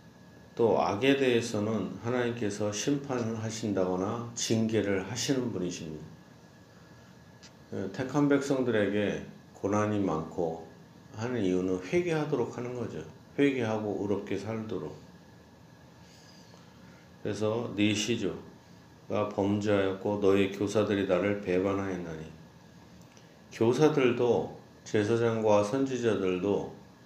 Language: Korean